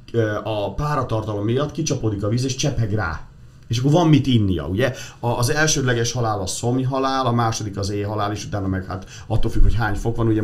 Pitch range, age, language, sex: 100-125 Hz, 40-59, Hungarian, male